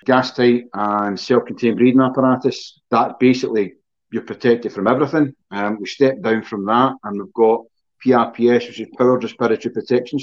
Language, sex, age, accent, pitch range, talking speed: English, male, 40-59, British, 110-130 Hz, 155 wpm